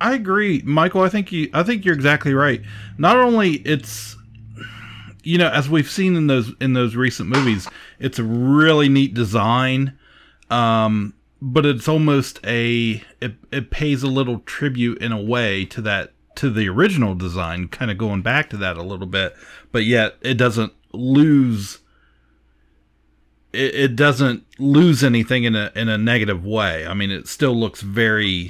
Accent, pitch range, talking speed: American, 95-135 Hz, 170 wpm